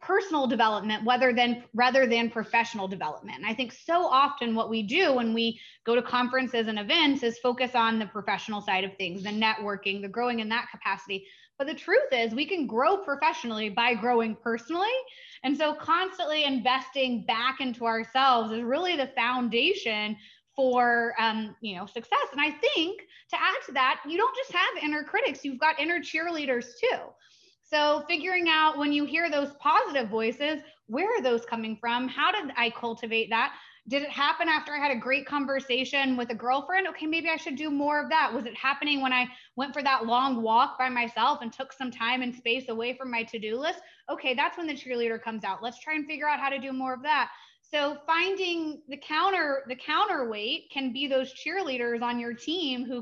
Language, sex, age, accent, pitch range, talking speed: English, female, 20-39, American, 235-300 Hz, 200 wpm